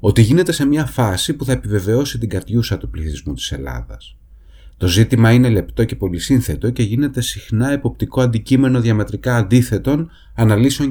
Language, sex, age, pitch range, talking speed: Greek, male, 30-49, 80-130 Hz, 155 wpm